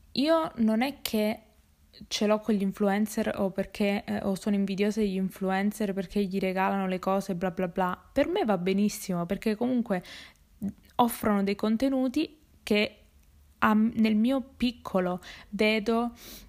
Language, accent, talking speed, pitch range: Italian, native, 145 wpm, 195-225 Hz